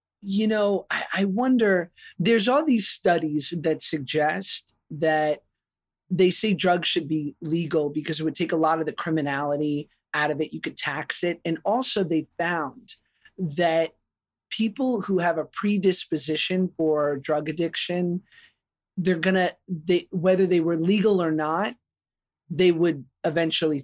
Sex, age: male, 30-49